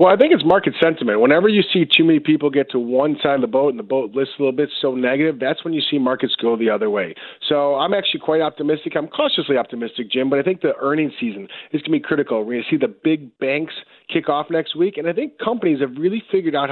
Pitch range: 140-180 Hz